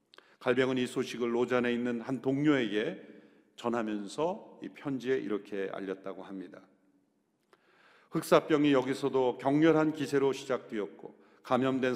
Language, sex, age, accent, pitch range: Korean, male, 40-59, native, 115-150 Hz